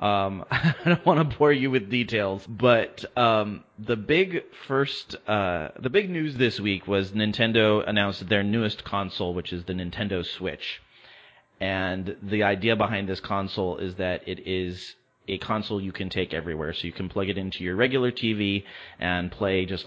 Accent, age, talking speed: American, 30-49, 180 wpm